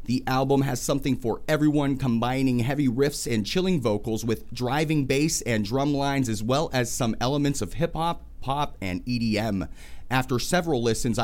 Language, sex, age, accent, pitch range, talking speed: English, male, 30-49, American, 115-150 Hz, 165 wpm